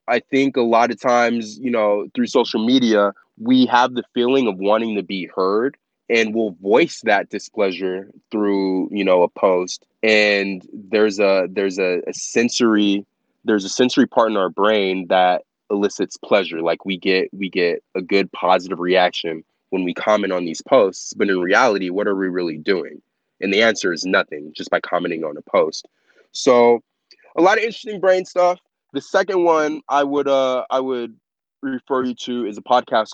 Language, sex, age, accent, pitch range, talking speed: English, male, 20-39, American, 95-120 Hz, 185 wpm